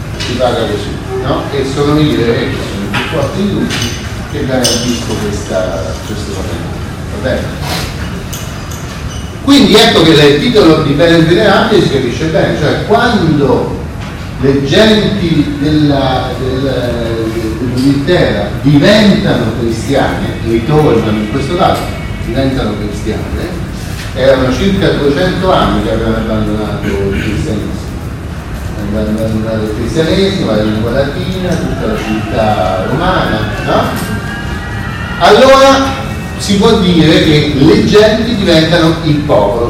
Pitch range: 110-155 Hz